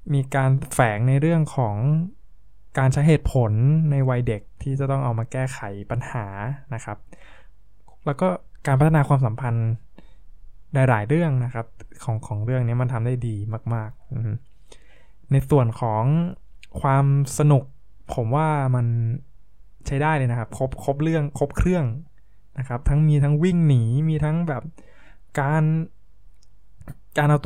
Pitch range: 115-145 Hz